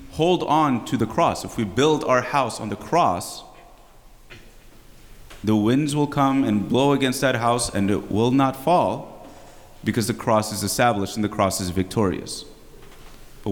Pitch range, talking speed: 105-135 Hz, 170 wpm